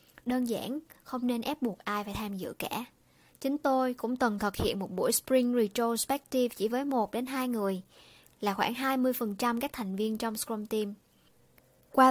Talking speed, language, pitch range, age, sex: 175 wpm, Vietnamese, 215-255 Hz, 20-39, male